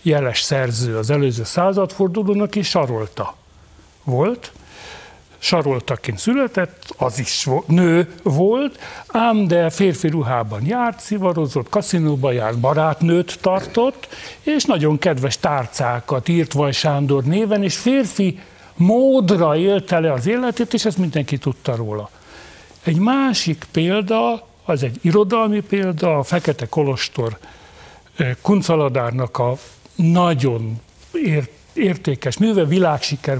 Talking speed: 105 wpm